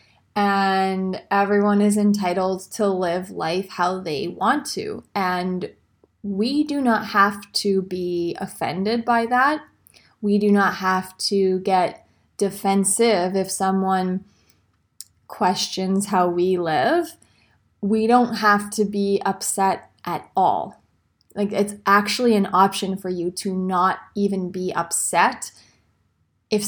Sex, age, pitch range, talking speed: female, 20-39, 185-210 Hz, 125 wpm